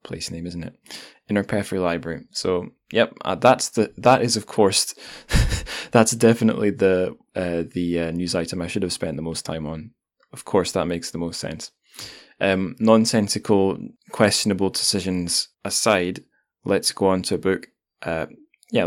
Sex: male